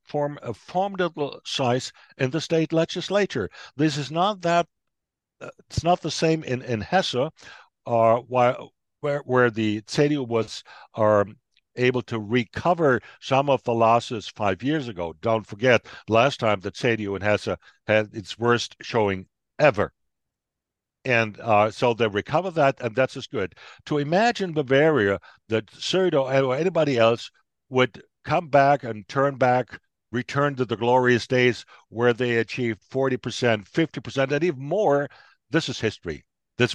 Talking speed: 150 wpm